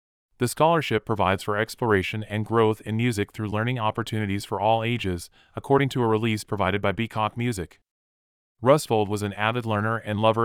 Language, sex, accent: English, male, American